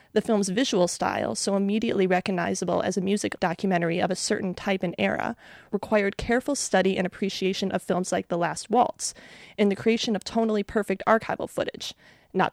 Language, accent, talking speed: English, American, 175 wpm